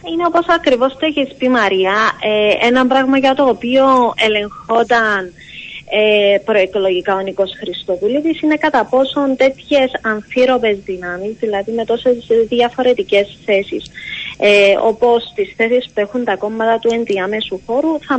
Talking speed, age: 140 wpm, 20-39